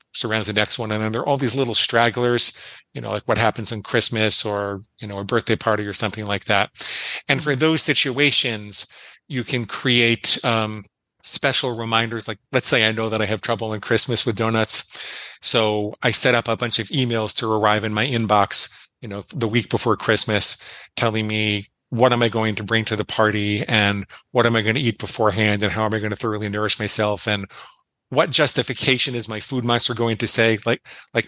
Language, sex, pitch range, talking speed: English, male, 105-120 Hz, 215 wpm